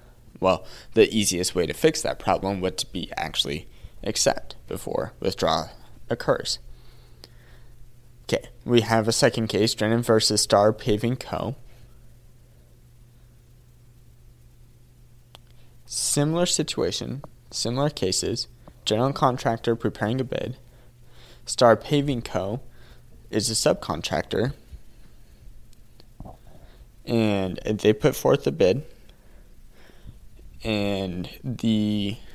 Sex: male